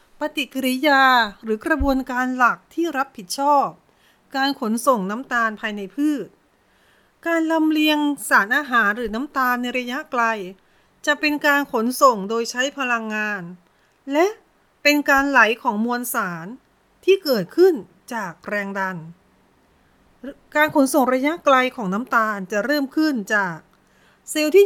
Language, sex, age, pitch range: Thai, female, 30-49, 215-300 Hz